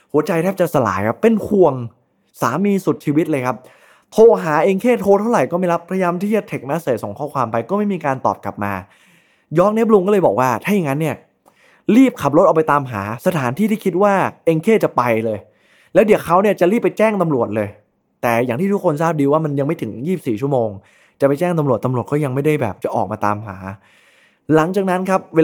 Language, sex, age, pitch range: Thai, male, 20-39, 110-170 Hz